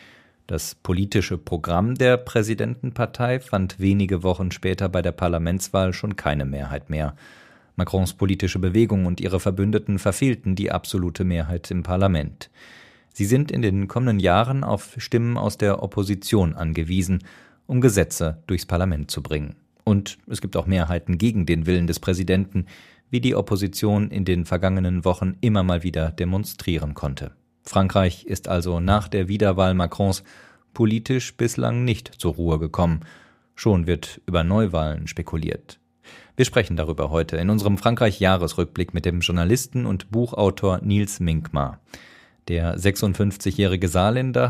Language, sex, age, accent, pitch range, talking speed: German, male, 40-59, German, 85-105 Hz, 140 wpm